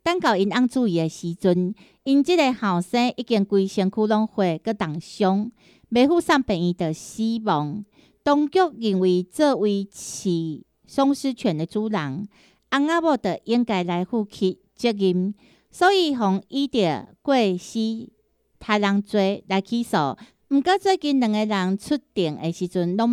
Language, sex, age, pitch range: Chinese, female, 50-69, 190-265 Hz